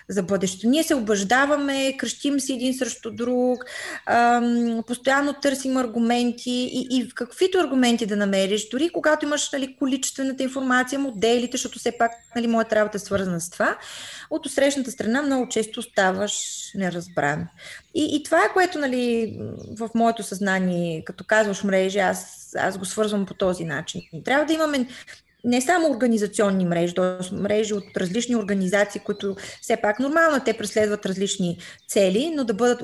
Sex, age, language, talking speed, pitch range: female, 20-39, Bulgarian, 155 wpm, 195-260 Hz